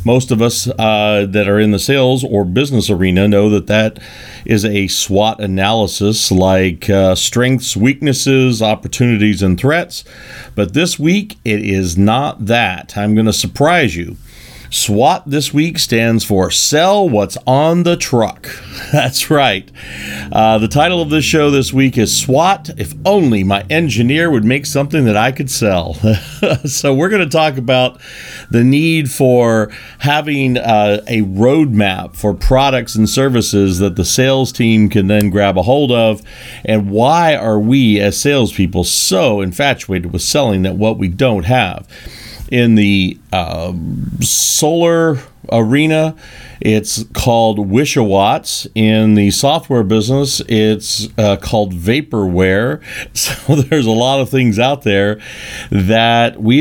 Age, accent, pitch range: 50-69, American, 105-135 Hz